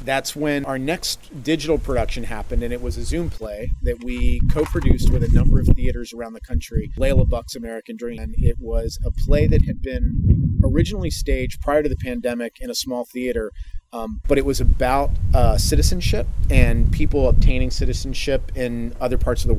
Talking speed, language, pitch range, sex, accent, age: 190 wpm, English, 110-135 Hz, male, American, 40-59